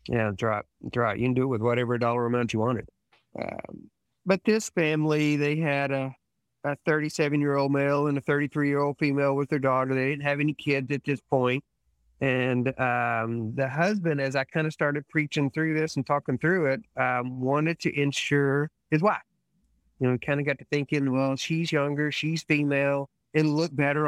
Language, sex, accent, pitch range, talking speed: English, male, American, 130-155 Hz, 195 wpm